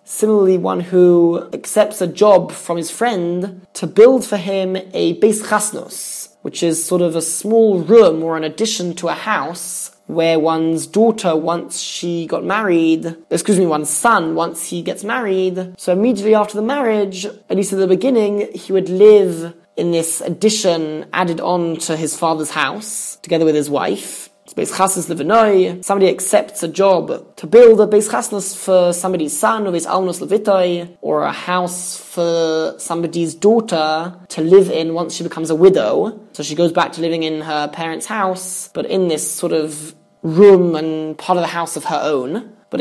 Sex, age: male, 20-39